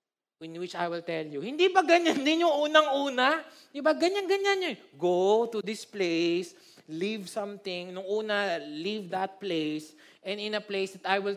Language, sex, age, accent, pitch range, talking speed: Filipino, male, 20-39, native, 170-280 Hz, 175 wpm